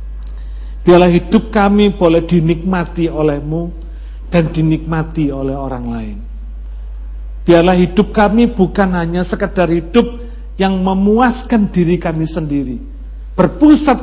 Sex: male